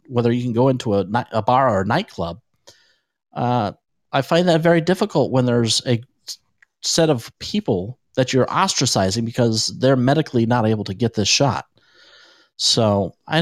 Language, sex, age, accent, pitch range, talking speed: English, male, 40-59, American, 105-150 Hz, 165 wpm